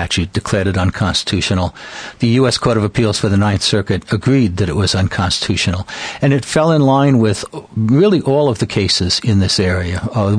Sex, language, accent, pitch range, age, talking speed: male, English, American, 100-120 Hz, 60-79, 185 wpm